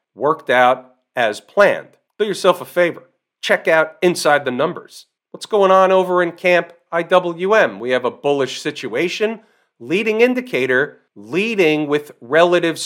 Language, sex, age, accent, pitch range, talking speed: English, male, 40-59, American, 135-175 Hz, 140 wpm